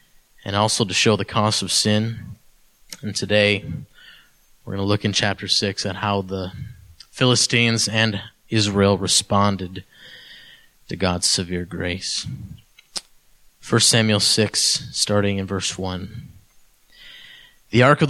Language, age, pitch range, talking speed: English, 20-39, 105-145 Hz, 125 wpm